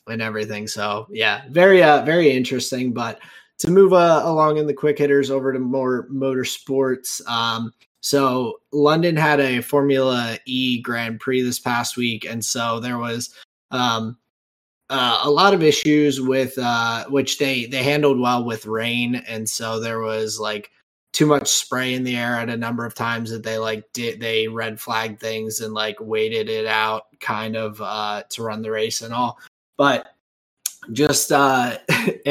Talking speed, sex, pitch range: 175 wpm, male, 115-135 Hz